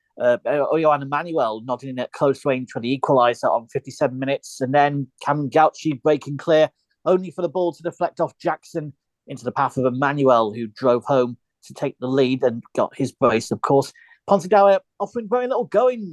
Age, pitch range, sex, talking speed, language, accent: 40-59, 130-165 Hz, male, 185 wpm, English, British